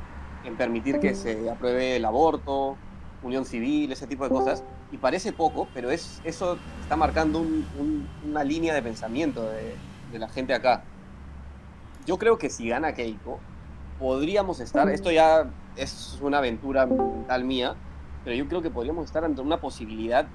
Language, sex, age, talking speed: Spanish, male, 30-49, 165 wpm